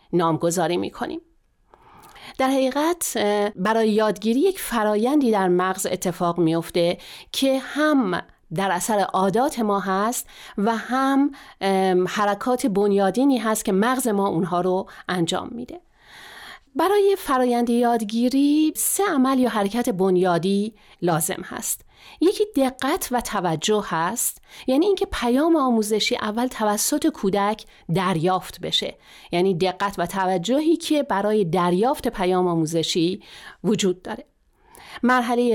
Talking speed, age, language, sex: 115 wpm, 40-59, Persian, female